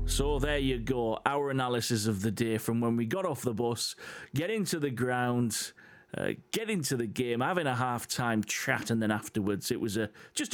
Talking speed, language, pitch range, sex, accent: 205 wpm, English, 110-140 Hz, male, British